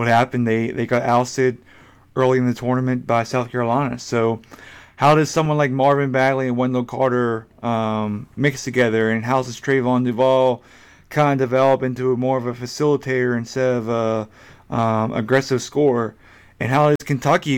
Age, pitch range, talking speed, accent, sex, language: 30-49, 120-135 Hz, 170 wpm, American, male, English